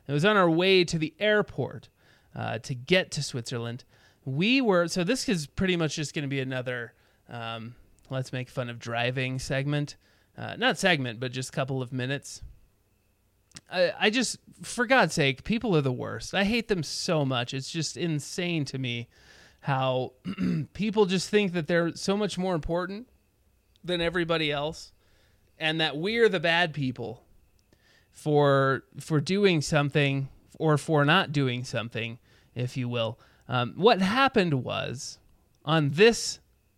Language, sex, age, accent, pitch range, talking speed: English, male, 30-49, American, 120-180 Hz, 160 wpm